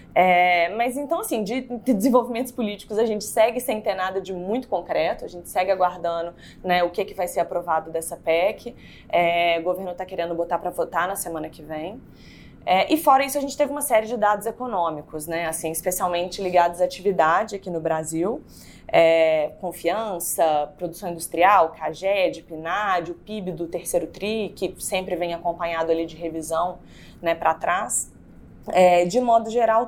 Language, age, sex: Portuguese, 20-39, female